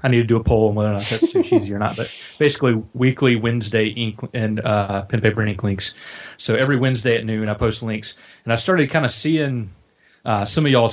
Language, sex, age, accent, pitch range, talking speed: English, male, 30-49, American, 105-125 Hz, 245 wpm